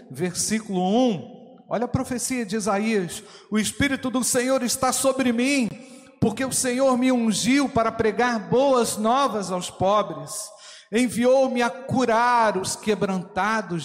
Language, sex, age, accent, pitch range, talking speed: Portuguese, male, 50-69, Brazilian, 150-230 Hz, 130 wpm